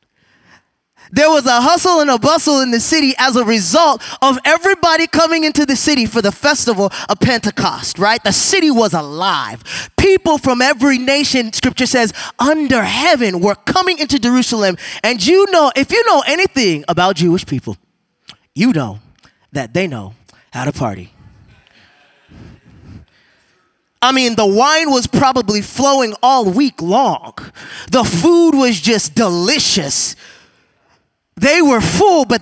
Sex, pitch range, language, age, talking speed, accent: male, 195-285 Hz, English, 20-39, 145 wpm, American